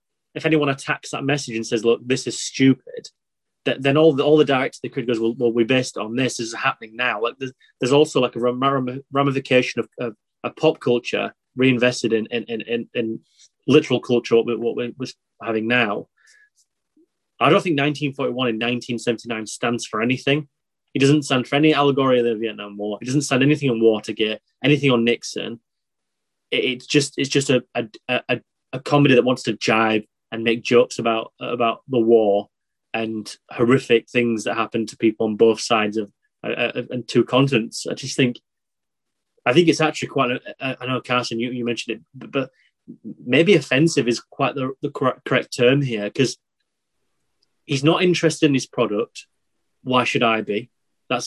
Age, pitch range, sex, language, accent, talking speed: 20-39, 115-140 Hz, male, English, British, 195 wpm